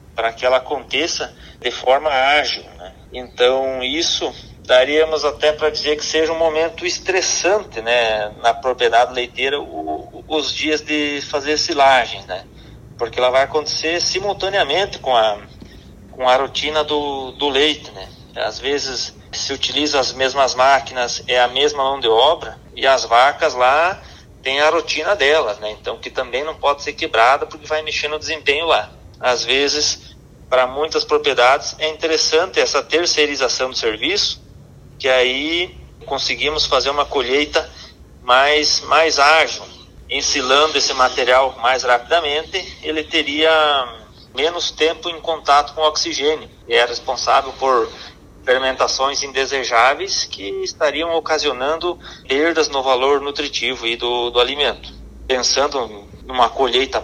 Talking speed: 140 wpm